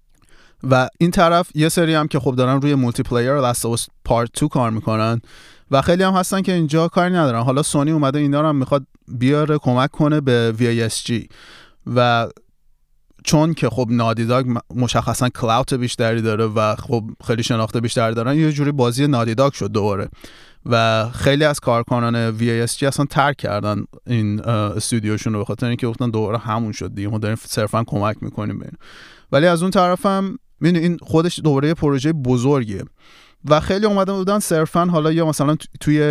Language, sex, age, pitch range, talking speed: Persian, male, 30-49, 115-145 Hz, 175 wpm